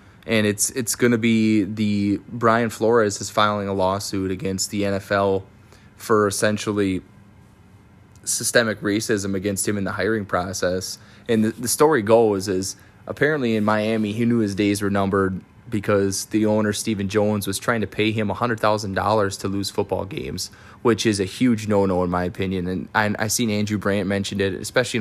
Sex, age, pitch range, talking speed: male, 20-39, 100-110 Hz, 190 wpm